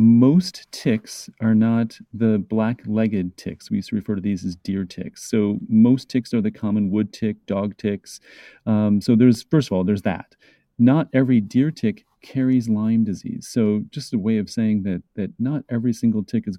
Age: 40-59